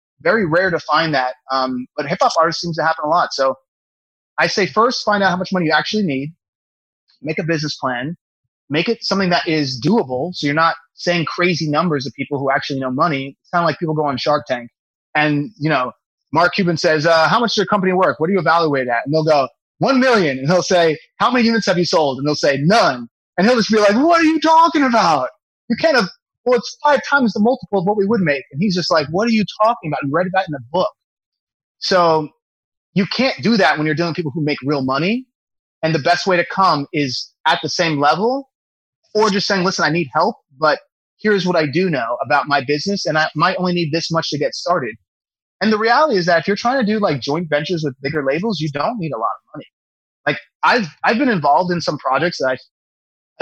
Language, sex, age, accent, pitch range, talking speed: English, male, 30-49, American, 145-200 Hz, 245 wpm